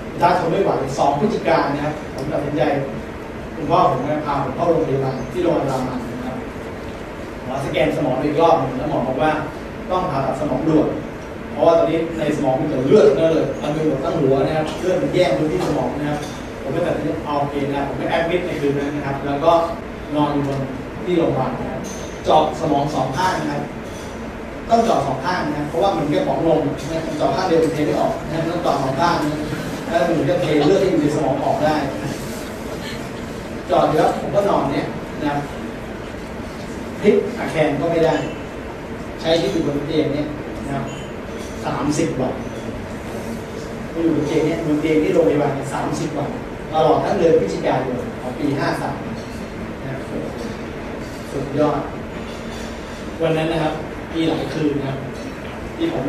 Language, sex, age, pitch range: Thai, male, 30-49, 140-165 Hz